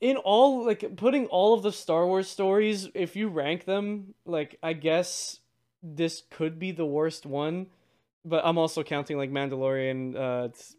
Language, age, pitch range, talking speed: English, 20-39, 145-190 Hz, 165 wpm